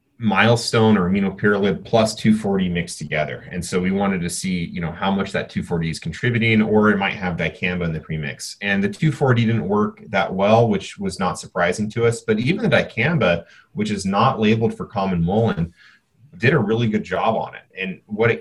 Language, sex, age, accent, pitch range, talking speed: English, male, 30-49, American, 90-125 Hz, 200 wpm